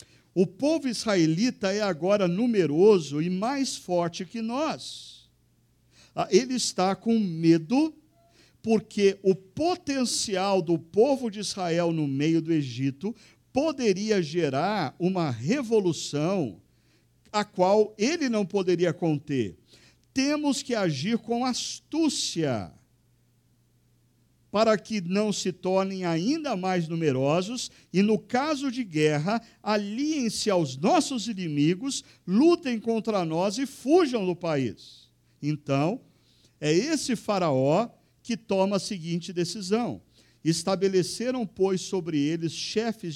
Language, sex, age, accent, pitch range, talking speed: Portuguese, male, 50-69, Brazilian, 160-230 Hz, 110 wpm